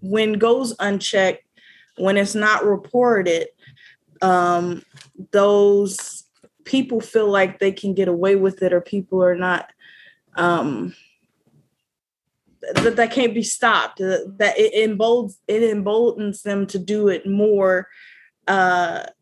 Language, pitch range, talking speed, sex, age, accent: English, 190-225 Hz, 120 wpm, female, 20-39, American